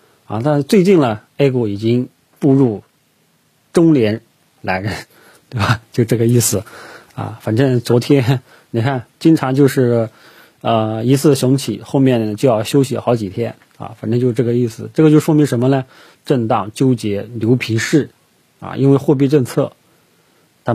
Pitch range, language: 110-140 Hz, Chinese